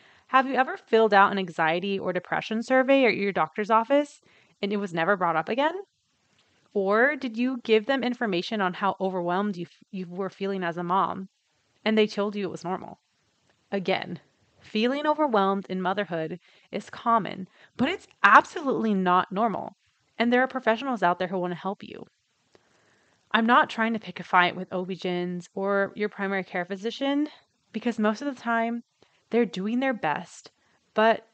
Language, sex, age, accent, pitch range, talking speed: English, female, 30-49, American, 185-230 Hz, 175 wpm